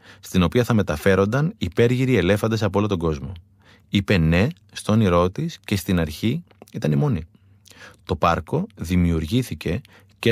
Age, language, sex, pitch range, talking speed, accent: 30-49, Greek, male, 95-115 Hz, 140 wpm, native